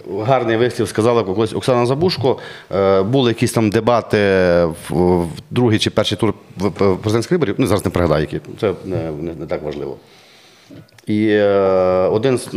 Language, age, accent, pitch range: Ukrainian, 40-59, native, 100-125 Hz